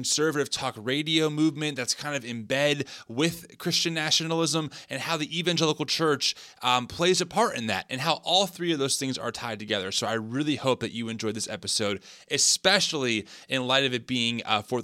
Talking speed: 200 wpm